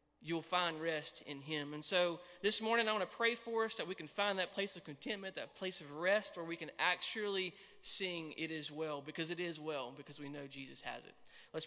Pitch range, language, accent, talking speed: 150-195 Hz, English, American, 235 wpm